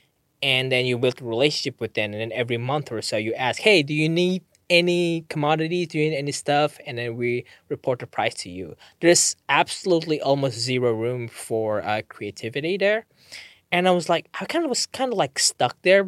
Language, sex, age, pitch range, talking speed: English, male, 20-39, 130-175 Hz, 215 wpm